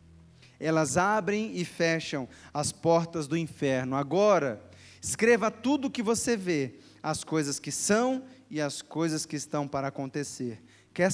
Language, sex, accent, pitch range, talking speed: Portuguese, male, Brazilian, 140-185 Hz, 145 wpm